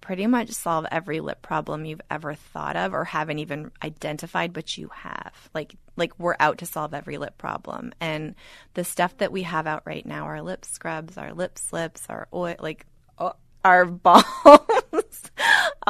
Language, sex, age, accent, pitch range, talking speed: English, female, 20-39, American, 155-185 Hz, 175 wpm